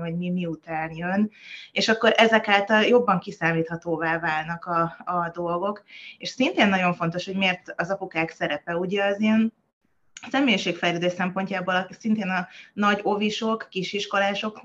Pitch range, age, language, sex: 170-205 Hz, 20-39, Hungarian, female